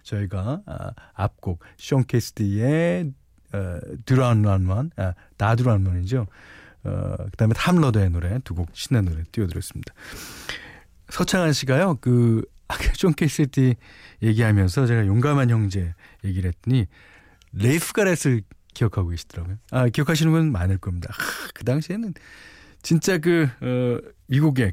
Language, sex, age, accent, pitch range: Korean, male, 40-59, native, 95-145 Hz